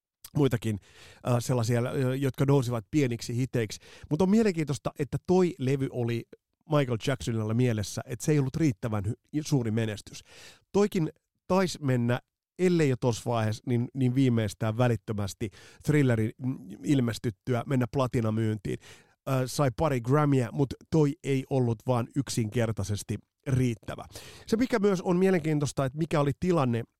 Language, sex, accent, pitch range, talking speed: Finnish, male, native, 115-150 Hz, 135 wpm